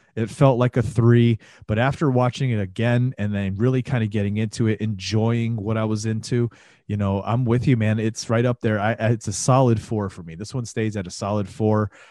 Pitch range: 105-130 Hz